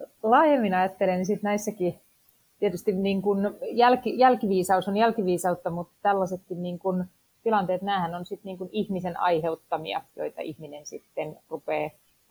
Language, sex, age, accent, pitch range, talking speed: Finnish, female, 30-49, native, 165-190 Hz, 110 wpm